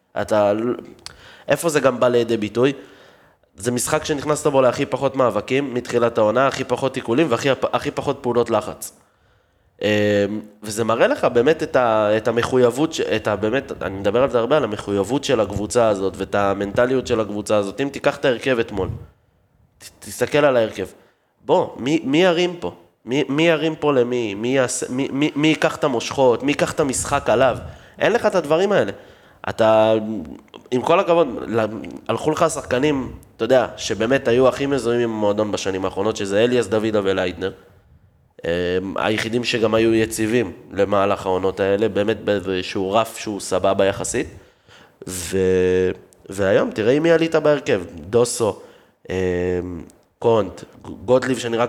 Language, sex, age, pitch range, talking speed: Hebrew, male, 20-39, 100-135 Hz, 145 wpm